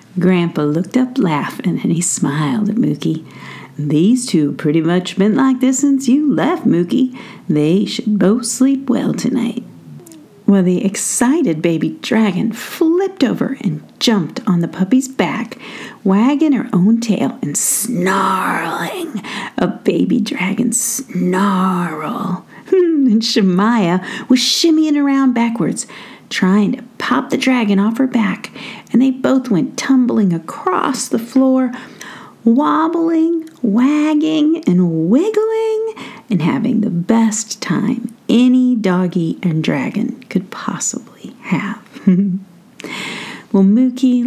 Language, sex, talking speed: English, female, 120 wpm